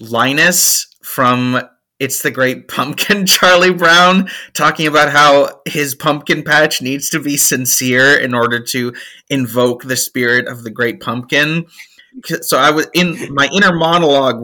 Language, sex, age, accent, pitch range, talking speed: English, male, 30-49, American, 125-185 Hz, 145 wpm